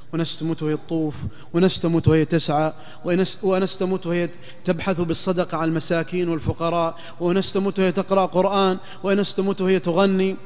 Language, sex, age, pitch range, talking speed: Arabic, male, 30-49, 155-210 Hz, 120 wpm